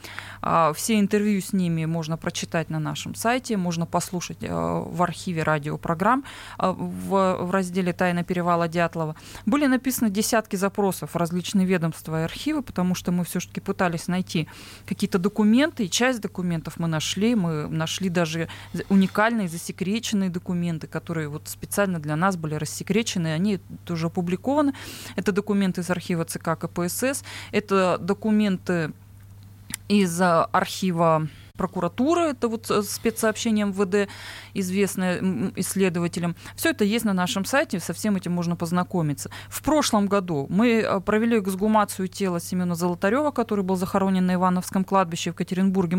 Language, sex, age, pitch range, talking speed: Russian, female, 20-39, 175-210 Hz, 130 wpm